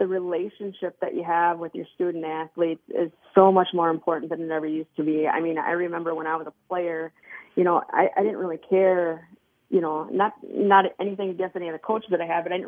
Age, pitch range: 30-49, 165-190 Hz